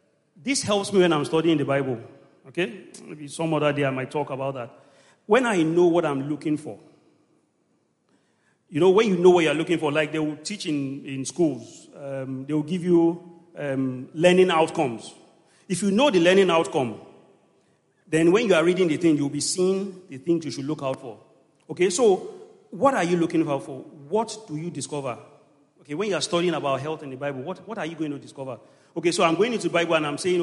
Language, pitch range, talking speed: English, 140-175 Hz, 220 wpm